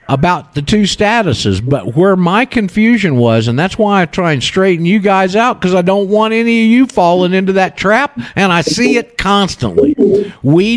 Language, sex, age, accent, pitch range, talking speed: English, male, 50-69, American, 145-205 Hz, 200 wpm